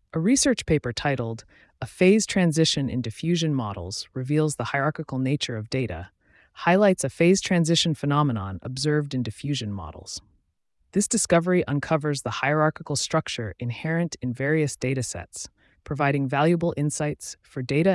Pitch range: 115-160 Hz